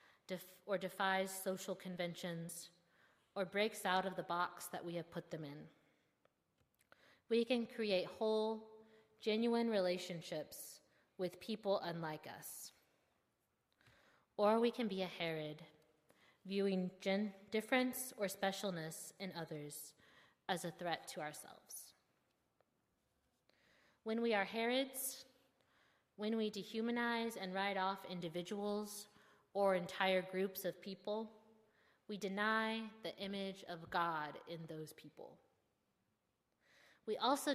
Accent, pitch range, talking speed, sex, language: American, 175-220 Hz, 110 wpm, female, English